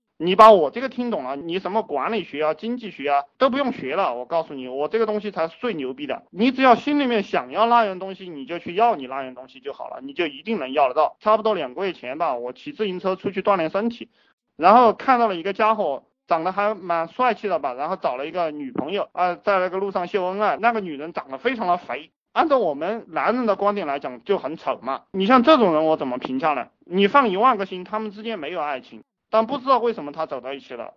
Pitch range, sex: 155-230 Hz, male